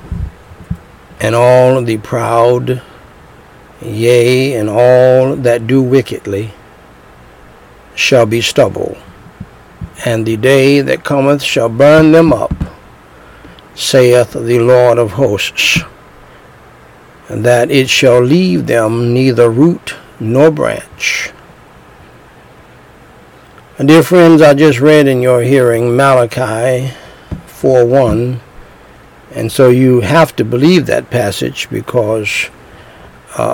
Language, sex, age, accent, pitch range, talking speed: English, male, 60-79, American, 115-135 Hz, 100 wpm